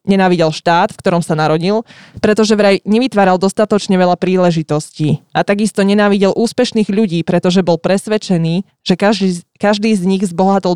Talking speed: 145 wpm